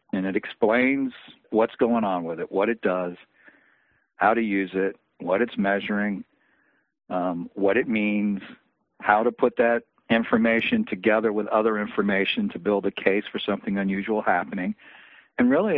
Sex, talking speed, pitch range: male, 155 wpm, 100-120 Hz